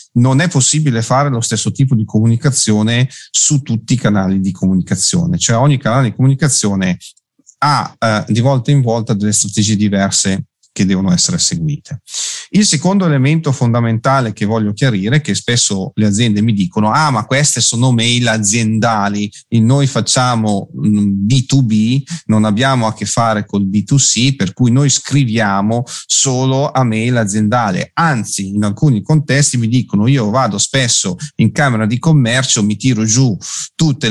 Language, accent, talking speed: Italian, native, 155 wpm